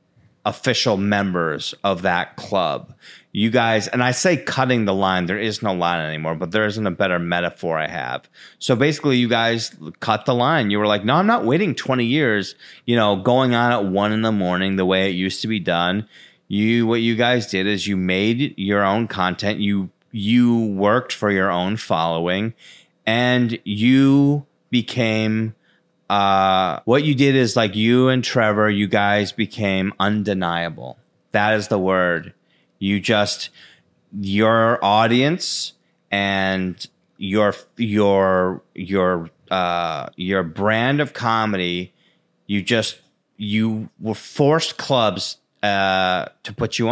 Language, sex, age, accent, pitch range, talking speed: English, male, 30-49, American, 95-115 Hz, 150 wpm